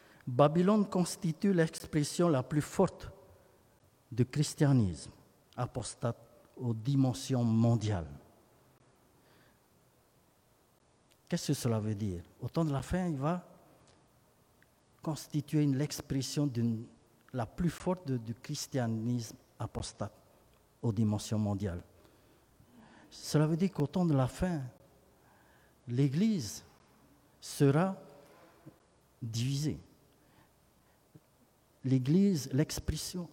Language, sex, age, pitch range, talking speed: French, male, 50-69, 115-150 Hz, 85 wpm